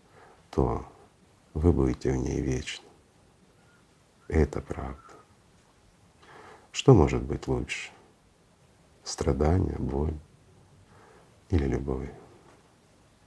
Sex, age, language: male, 50-69, Russian